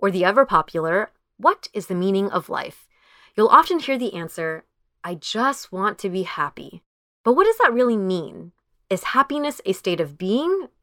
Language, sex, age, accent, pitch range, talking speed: English, female, 20-39, American, 170-235 Hz, 175 wpm